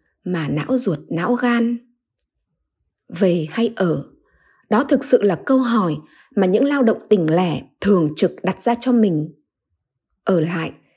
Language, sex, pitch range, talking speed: Vietnamese, female, 185-265 Hz, 155 wpm